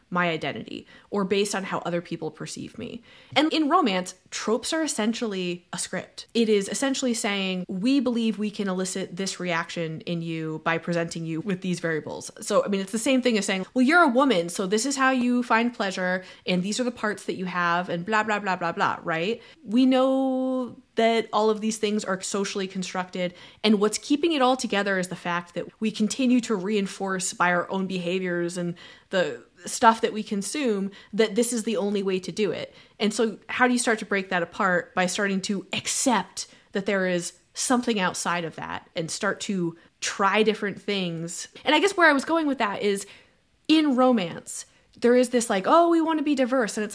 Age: 20-39